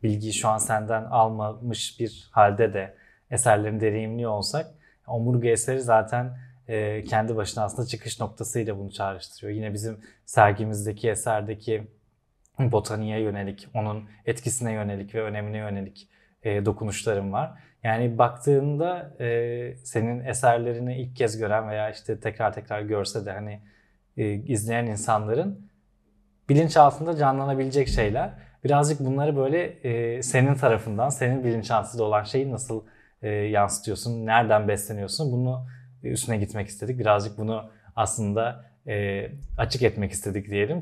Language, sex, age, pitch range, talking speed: Turkish, male, 20-39, 105-125 Hz, 115 wpm